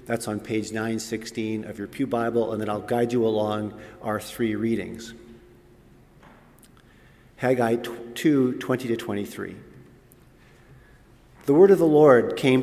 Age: 50-69